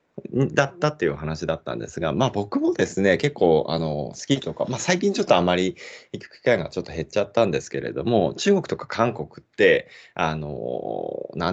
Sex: male